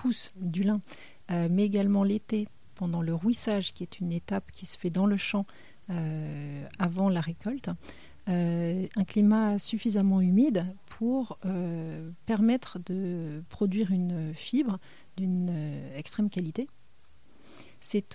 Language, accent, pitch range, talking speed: French, French, 165-200 Hz, 130 wpm